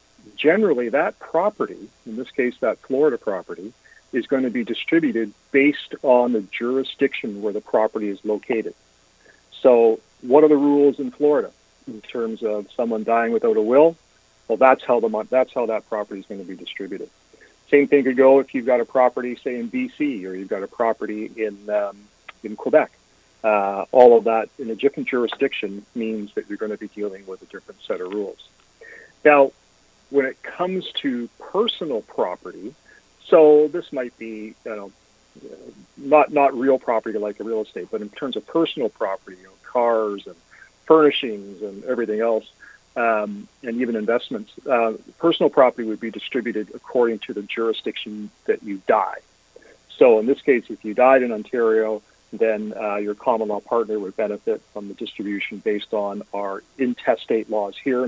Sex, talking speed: male, 175 wpm